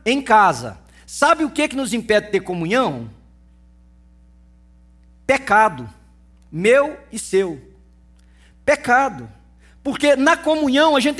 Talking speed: 115 wpm